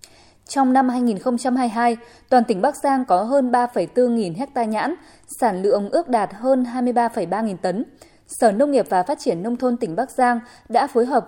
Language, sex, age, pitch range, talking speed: Vietnamese, female, 10-29, 205-260 Hz, 185 wpm